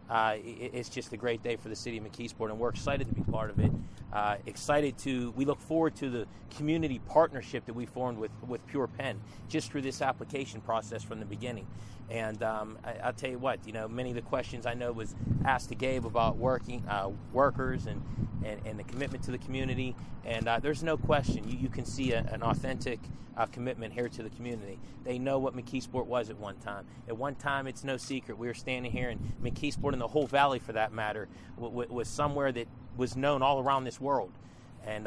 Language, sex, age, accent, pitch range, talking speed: English, male, 30-49, American, 110-130 Hz, 230 wpm